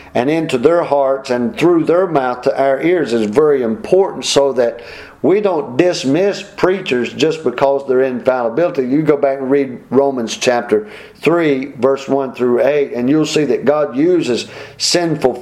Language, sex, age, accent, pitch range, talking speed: English, male, 50-69, American, 120-145 Hz, 165 wpm